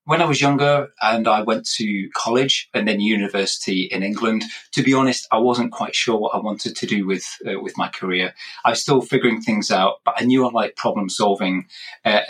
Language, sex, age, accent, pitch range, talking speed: English, male, 30-49, British, 105-130 Hz, 220 wpm